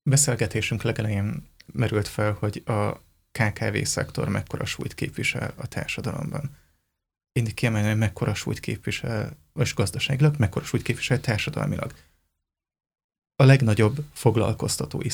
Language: Hungarian